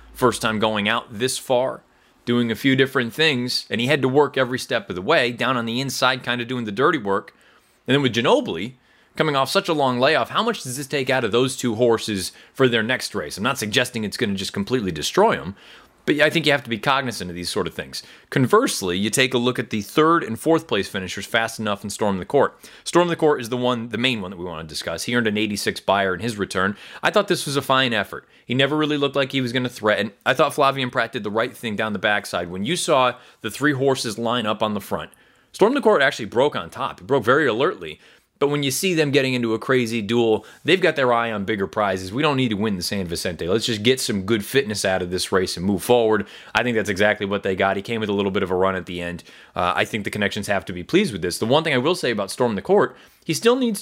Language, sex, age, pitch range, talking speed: English, male, 30-49, 105-135 Hz, 275 wpm